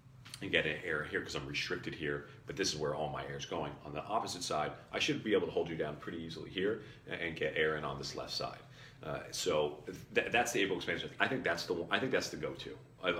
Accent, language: American, English